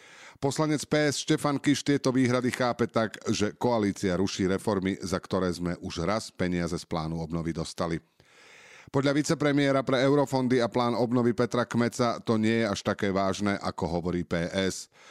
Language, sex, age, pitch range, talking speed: Slovak, male, 40-59, 95-120 Hz, 160 wpm